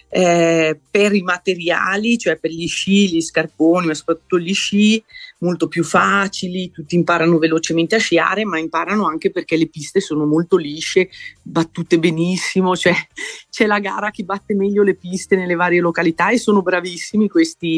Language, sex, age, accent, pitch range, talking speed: Italian, female, 30-49, native, 160-190 Hz, 160 wpm